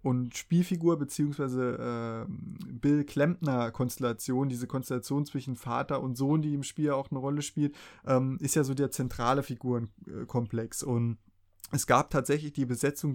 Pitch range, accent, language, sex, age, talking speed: 125-150 Hz, German, German, male, 30-49, 145 wpm